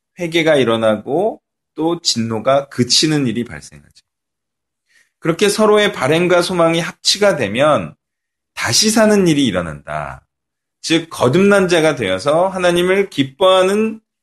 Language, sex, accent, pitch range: Korean, male, native, 120-175 Hz